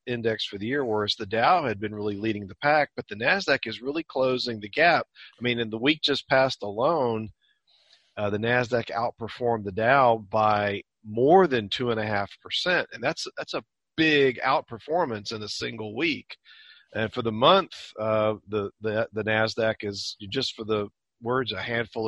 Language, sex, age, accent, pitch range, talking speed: English, male, 40-59, American, 110-135 Hz, 175 wpm